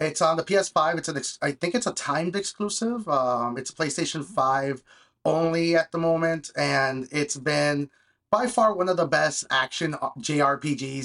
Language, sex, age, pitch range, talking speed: English, male, 30-49, 140-170 Hz, 170 wpm